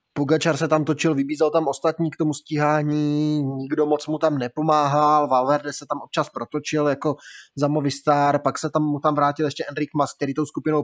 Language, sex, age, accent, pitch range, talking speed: Czech, male, 20-39, native, 140-155 Hz, 190 wpm